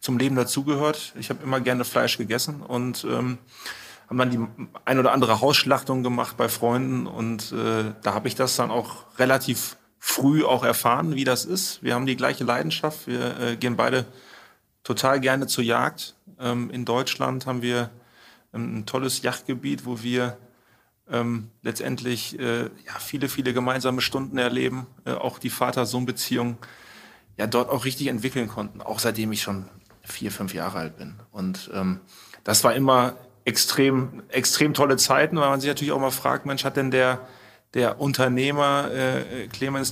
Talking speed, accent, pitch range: 170 wpm, German, 120-135 Hz